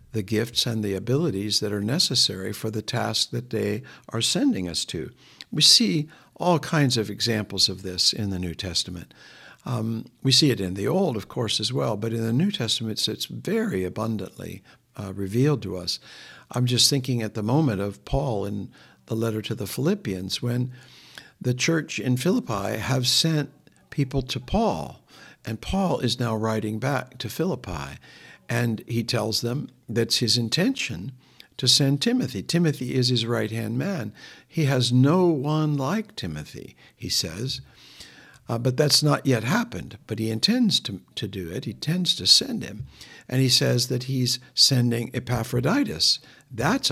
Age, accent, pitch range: 60-79, American, 110-135 Hz